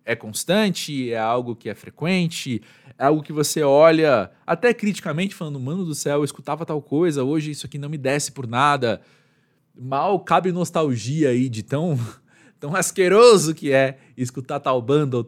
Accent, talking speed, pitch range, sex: Brazilian, 175 wpm, 125-165 Hz, male